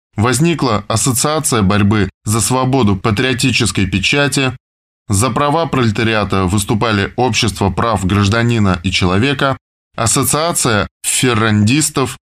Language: Russian